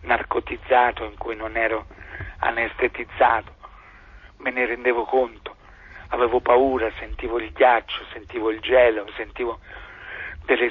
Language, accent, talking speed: Italian, native, 110 wpm